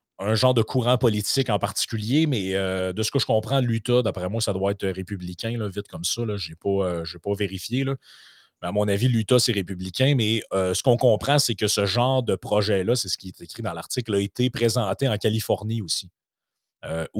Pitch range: 95-115 Hz